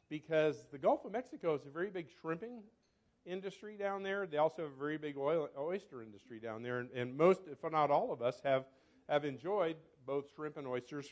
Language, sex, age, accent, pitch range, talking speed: English, male, 50-69, American, 125-180 Hz, 205 wpm